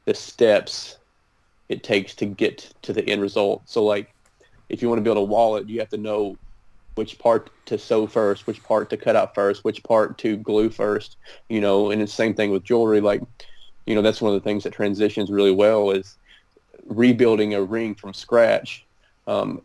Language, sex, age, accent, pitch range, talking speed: English, male, 30-49, American, 100-110 Hz, 205 wpm